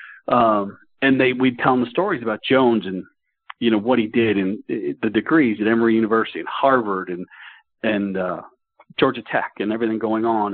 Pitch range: 110-145 Hz